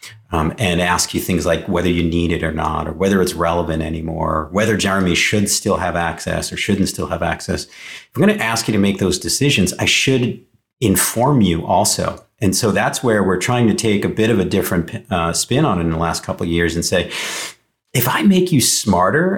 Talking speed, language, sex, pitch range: 225 wpm, English, male, 85-100 Hz